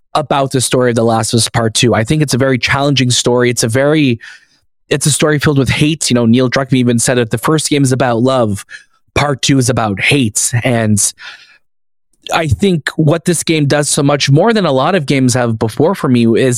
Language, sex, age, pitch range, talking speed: English, male, 20-39, 120-150 Hz, 230 wpm